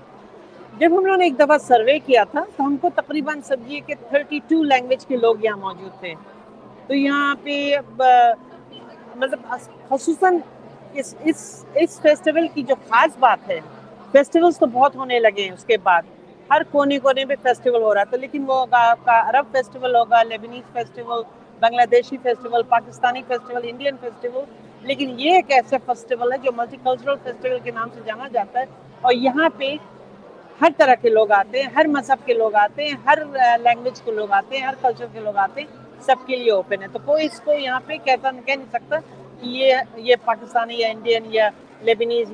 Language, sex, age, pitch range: Urdu, female, 50-69, 230-275 Hz